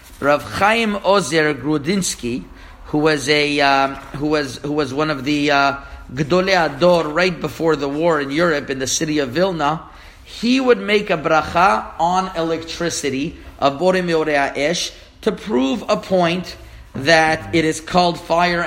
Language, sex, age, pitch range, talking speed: English, male, 50-69, 140-175 Hz, 155 wpm